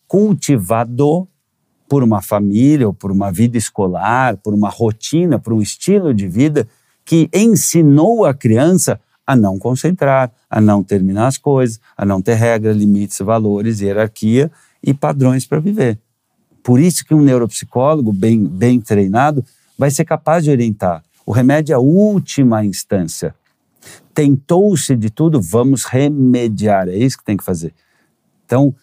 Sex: male